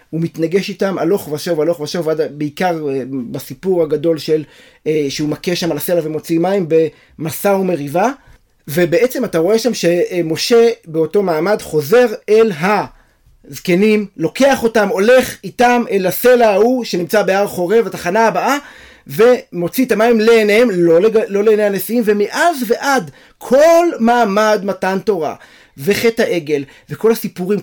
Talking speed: 130 wpm